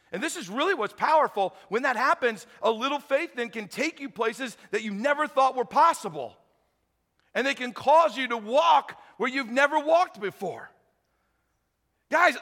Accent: American